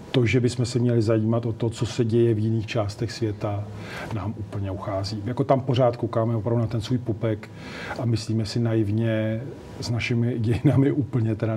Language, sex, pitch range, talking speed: Czech, male, 110-120 Hz, 185 wpm